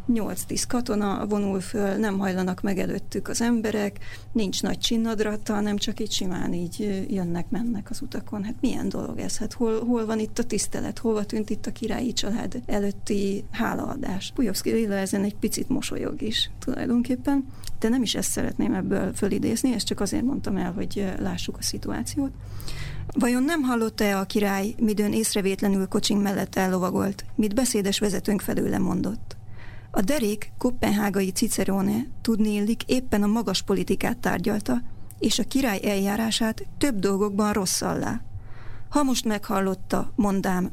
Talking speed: 150 wpm